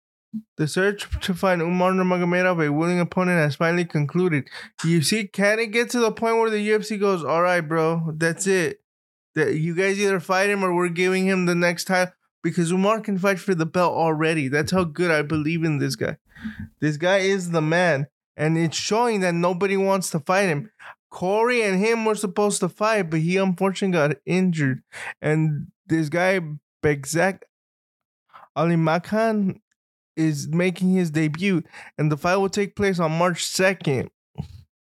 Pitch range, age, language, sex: 155-195 Hz, 20-39, English, male